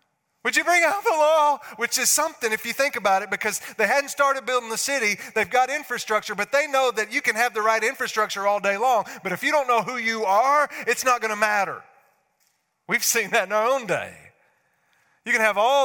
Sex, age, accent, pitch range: male, 30-49, American, 200-245 Hz